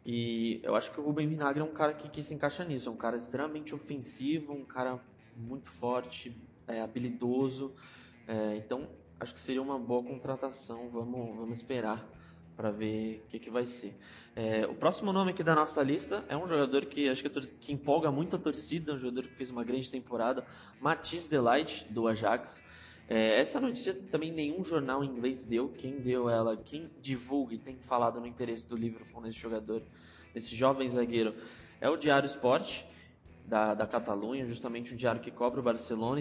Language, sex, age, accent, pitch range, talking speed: Portuguese, male, 10-29, Brazilian, 115-140 Hz, 180 wpm